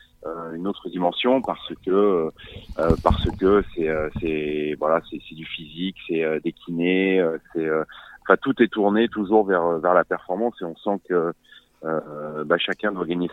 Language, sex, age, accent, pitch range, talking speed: French, male, 30-49, French, 80-100 Hz, 160 wpm